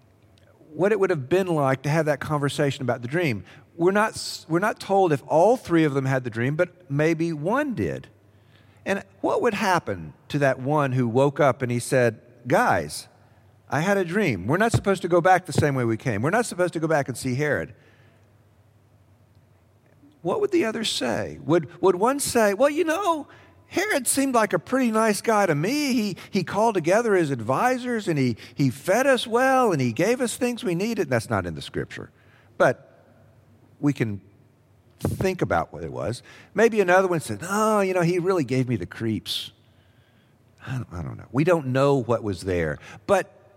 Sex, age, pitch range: male, 50-69, 115-185 Hz